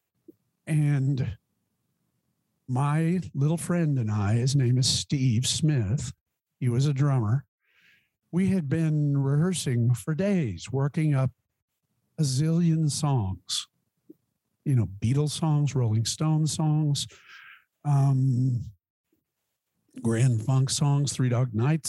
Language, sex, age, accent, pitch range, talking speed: English, male, 50-69, American, 120-155 Hz, 110 wpm